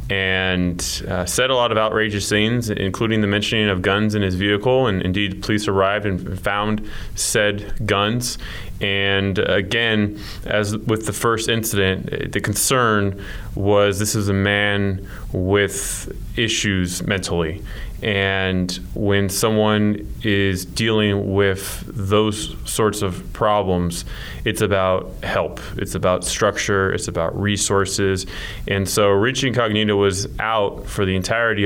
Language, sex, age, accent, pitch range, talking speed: English, male, 20-39, American, 95-110 Hz, 130 wpm